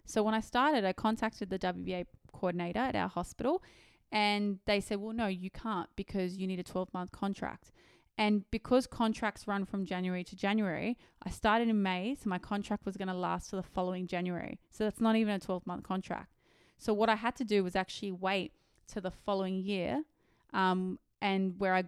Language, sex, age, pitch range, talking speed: English, female, 20-39, 185-210 Hz, 195 wpm